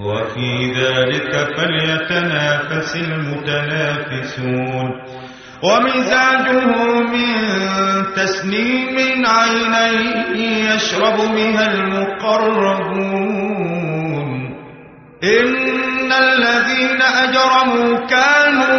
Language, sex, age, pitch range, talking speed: Arabic, male, 30-49, 165-230 Hz, 50 wpm